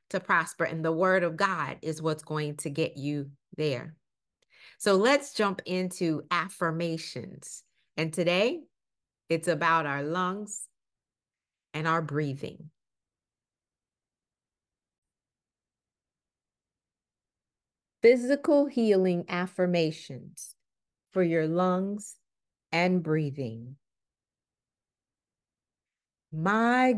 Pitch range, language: 150-200 Hz, English